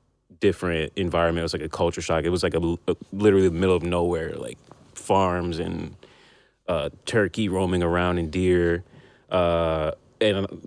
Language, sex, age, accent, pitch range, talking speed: English, male, 20-39, American, 80-95 Hz, 165 wpm